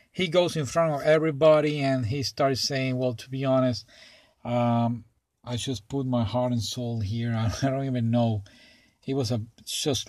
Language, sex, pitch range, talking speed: English, male, 110-135 Hz, 185 wpm